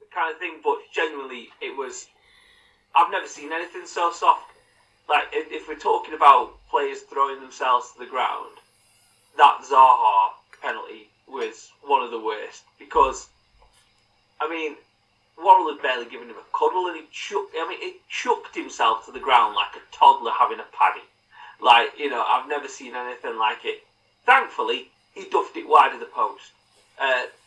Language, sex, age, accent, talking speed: English, male, 30-49, British, 170 wpm